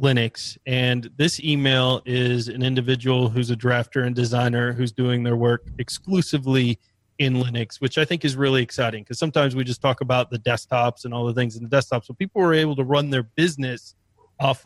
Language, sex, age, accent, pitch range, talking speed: English, male, 30-49, American, 120-140 Hz, 200 wpm